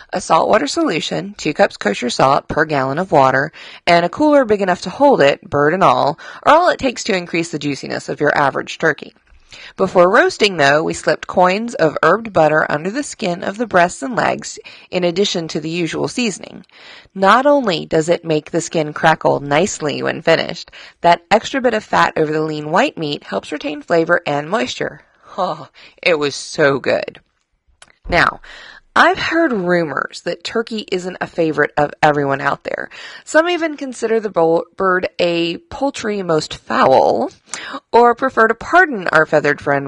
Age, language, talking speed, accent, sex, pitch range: 30-49, English, 180 wpm, American, female, 155-225 Hz